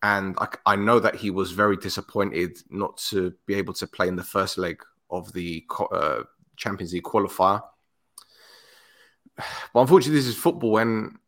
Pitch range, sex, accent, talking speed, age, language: 95-110 Hz, male, British, 165 wpm, 30-49, English